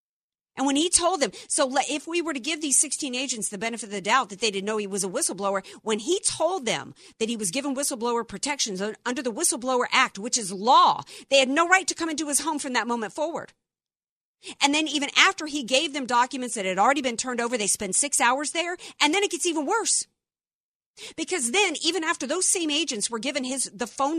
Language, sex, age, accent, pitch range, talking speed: English, female, 50-69, American, 225-305 Hz, 235 wpm